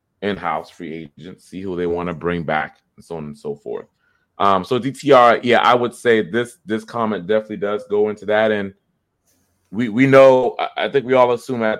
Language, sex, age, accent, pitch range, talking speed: English, male, 30-49, American, 90-110 Hz, 205 wpm